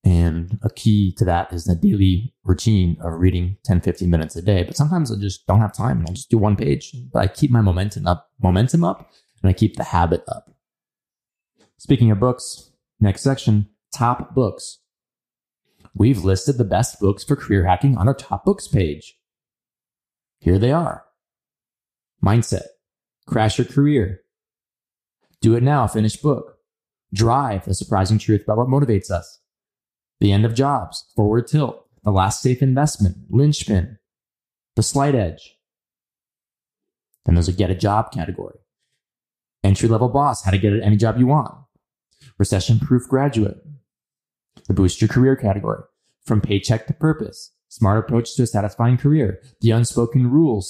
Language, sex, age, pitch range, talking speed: English, male, 20-39, 95-125 Hz, 155 wpm